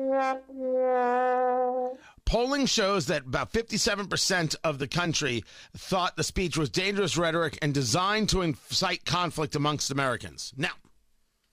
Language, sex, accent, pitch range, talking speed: English, male, American, 160-235 Hz, 115 wpm